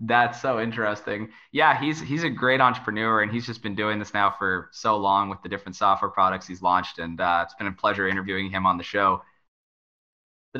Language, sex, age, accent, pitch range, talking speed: English, male, 20-39, American, 100-125 Hz, 215 wpm